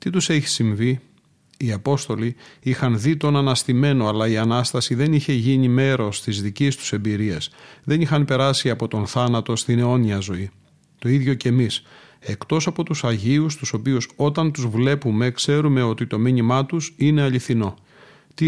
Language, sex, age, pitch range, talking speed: Greek, male, 40-59, 115-145 Hz, 165 wpm